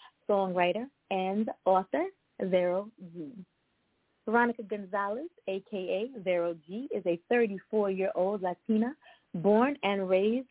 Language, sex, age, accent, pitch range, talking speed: English, female, 30-49, American, 190-240 Hz, 95 wpm